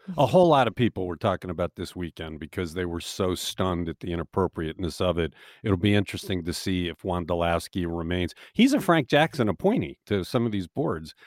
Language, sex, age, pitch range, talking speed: English, male, 50-69, 95-145 Hz, 200 wpm